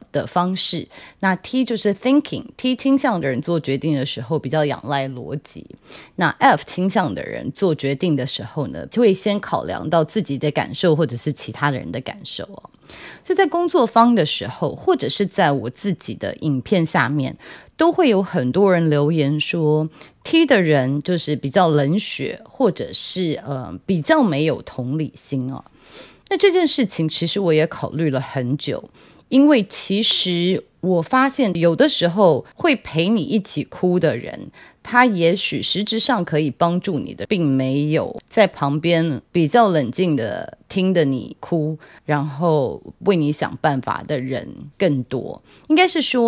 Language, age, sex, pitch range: Chinese, 30-49, female, 145-225 Hz